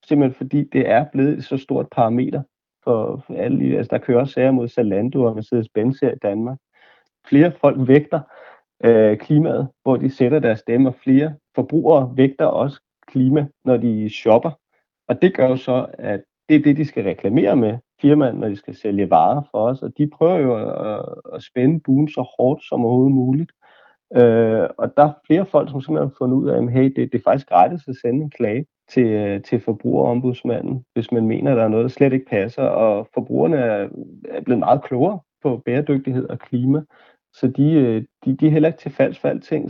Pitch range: 120-145 Hz